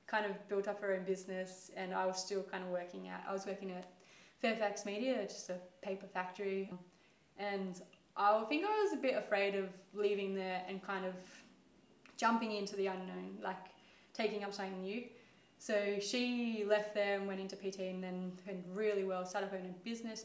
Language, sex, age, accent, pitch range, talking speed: English, female, 20-39, Australian, 190-220 Hz, 195 wpm